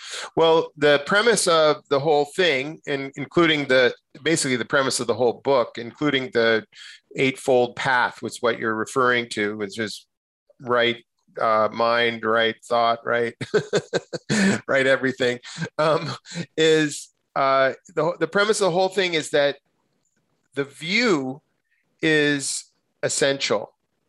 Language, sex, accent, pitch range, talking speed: English, male, American, 120-145 Hz, 130 wpm